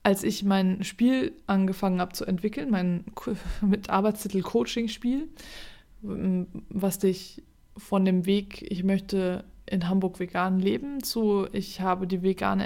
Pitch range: 190-215 Hz